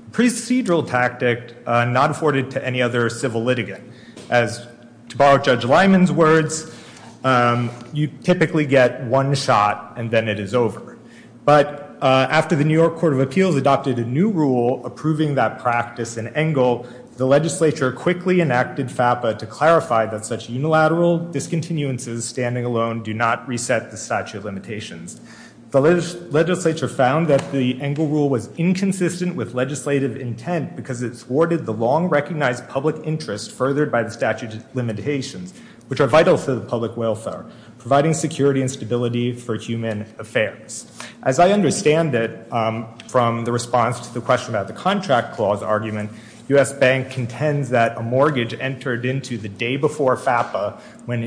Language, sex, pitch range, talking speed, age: English, male, 120-150 Hz, 155 wpm, 30-49